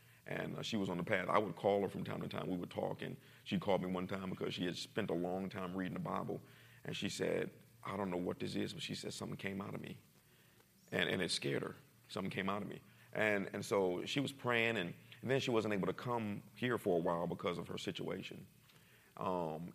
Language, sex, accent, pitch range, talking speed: English, male, American, 95-120 Hz, 255 wpm